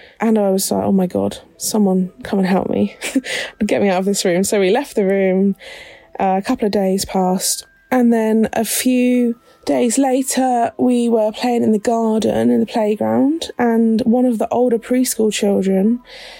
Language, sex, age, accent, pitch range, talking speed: English, female, 20-39, British, 195-250 Hz, 190 wpm